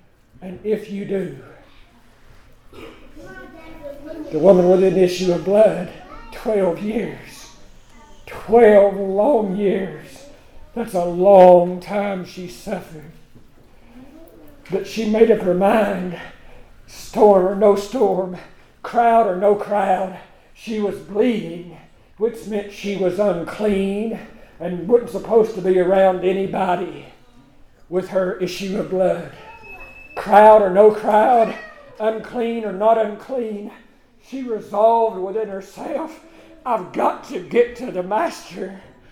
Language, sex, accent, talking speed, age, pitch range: English, male, American, 115 wpm, 50-69, 185-235 Hz